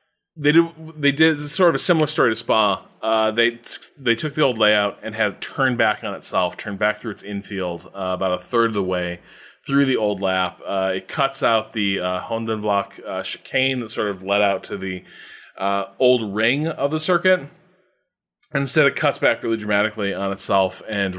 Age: 20-39